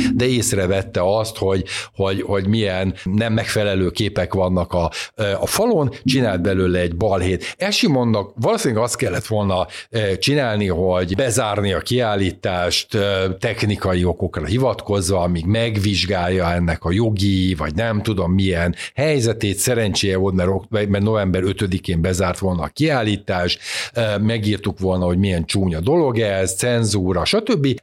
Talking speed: 125 wpm